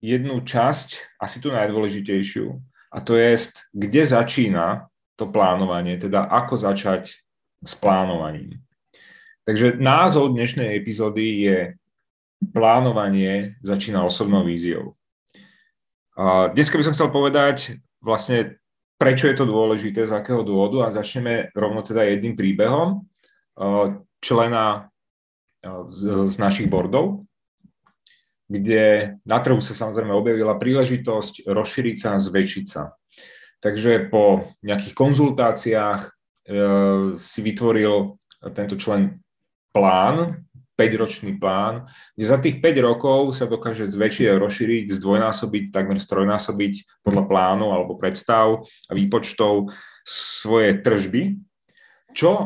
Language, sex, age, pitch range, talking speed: Czech, male, 30-49, 100-125 Hz, 110 wpm